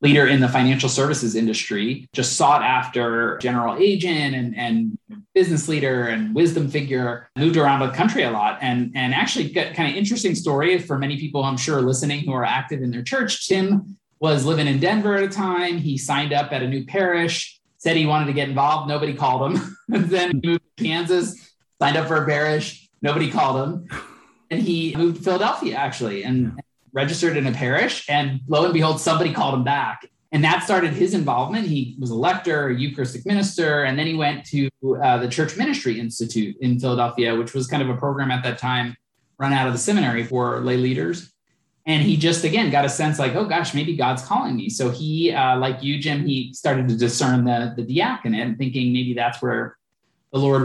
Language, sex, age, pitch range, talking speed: English, male, 20-39, 125-165 Hz, 210 wpm